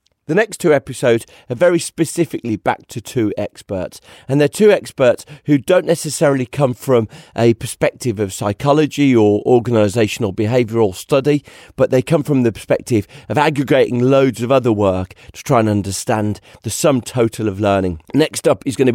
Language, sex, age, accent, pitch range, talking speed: English, male, 40-59, British, 110-145 Hz, 170 wpm